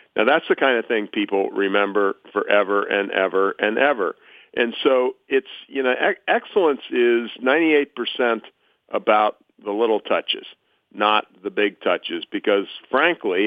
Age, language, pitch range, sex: 50-69, English, 105-155 Hz, male